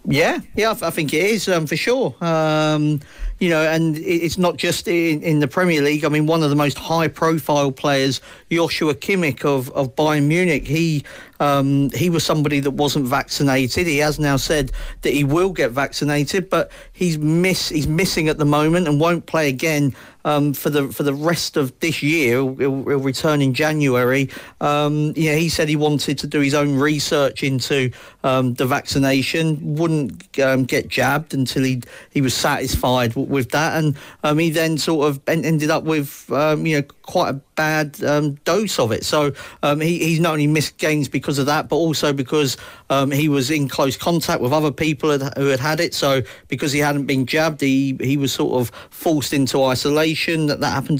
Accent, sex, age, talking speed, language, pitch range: British, male, 40-59, 200 wpm, English, 140-160 Hz